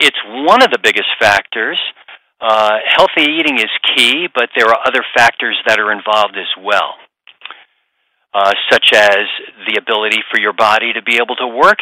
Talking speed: 175 wpm